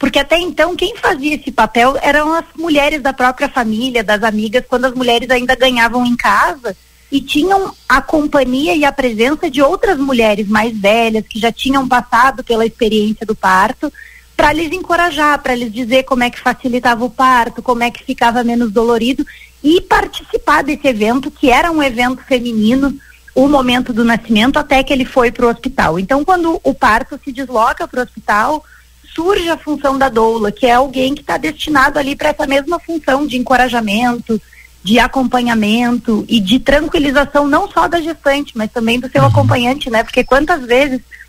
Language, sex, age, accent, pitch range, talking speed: Portuguese, female, 30-49, Brazilian, 235-285 Hz, 180 wpm